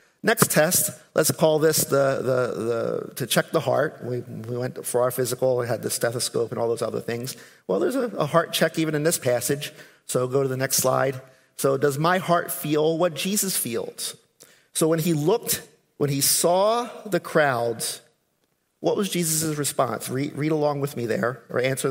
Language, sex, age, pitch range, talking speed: English, male, 50-69, 135-165 Hz, 195 wpm